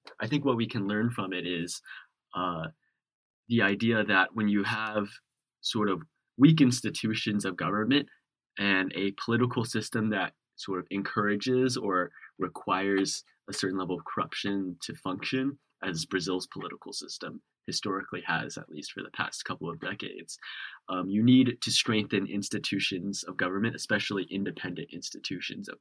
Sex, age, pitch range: male, 20-39, 95-120 Hz